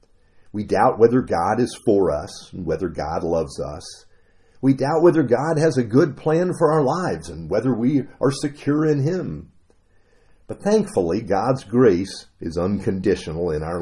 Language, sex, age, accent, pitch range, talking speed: English, male, 50-69, American, 90-145 Hz, 165 wpm